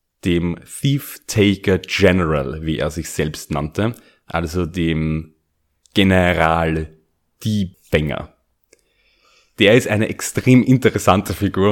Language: German